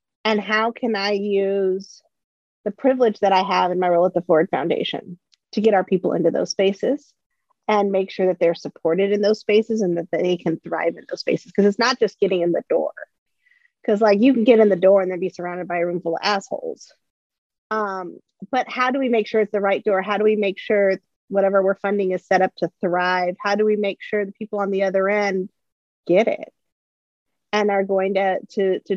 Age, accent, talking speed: 40-59, American, 230 wpm